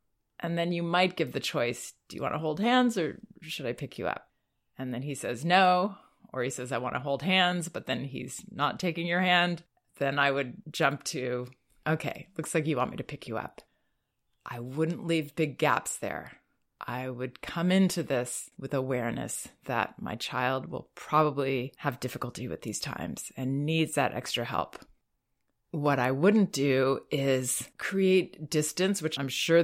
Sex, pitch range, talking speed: female, 130-170 Hz, 185 wpm